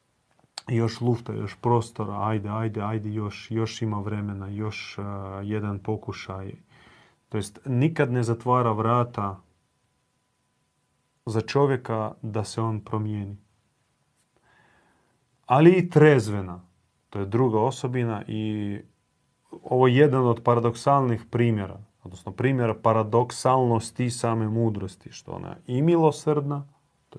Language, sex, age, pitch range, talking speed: Croatian, male, 40-59, 105-125 Hz, 115 wpm